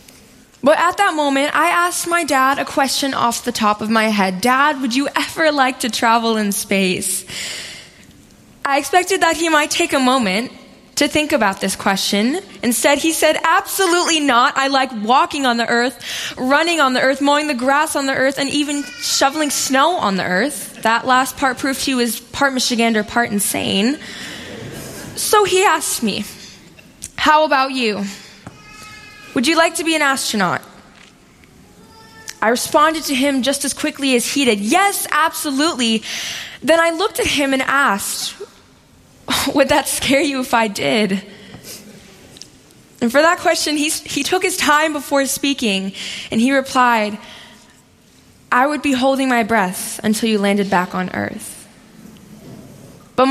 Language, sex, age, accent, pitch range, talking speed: English, female, 10-29, American, 230-305 Hz, 160 wpm